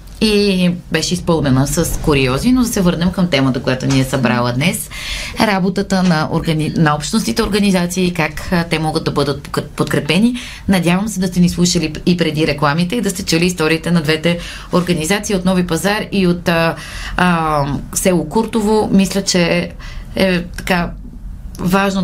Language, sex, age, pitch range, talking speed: Bulgarian, female, 30-49, 150-190 Hz, 165 wpm